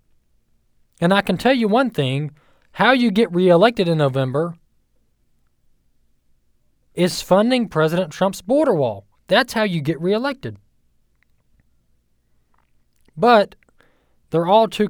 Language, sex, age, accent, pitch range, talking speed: English, male, 20-39, American, 135-200 Hz, 115 wpm